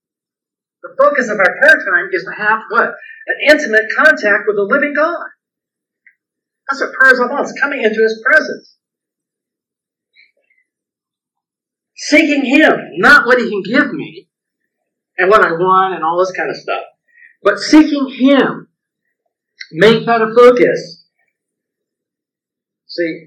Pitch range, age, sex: 195-310 Hz, 50-69, male